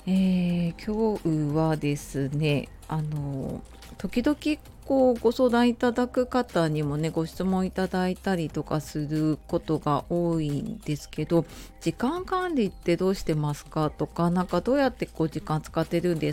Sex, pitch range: female, 150-205 Hz